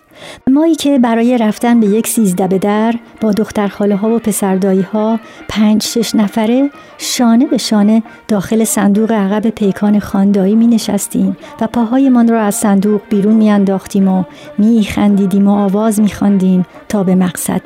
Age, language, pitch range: 50-69, Persian, 200-230 Hz